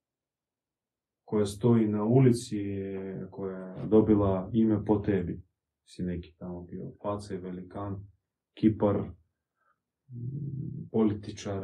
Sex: male